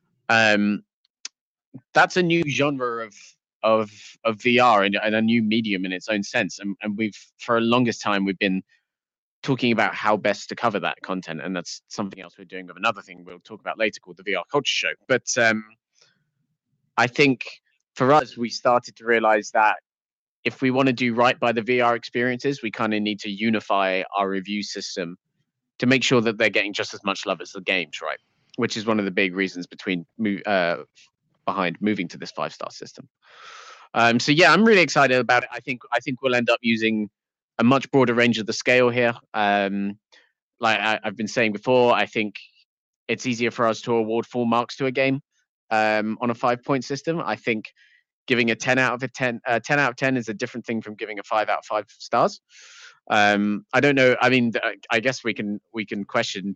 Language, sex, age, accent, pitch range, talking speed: English, male, 20-39, British, 105-125 Hz, 210 wpm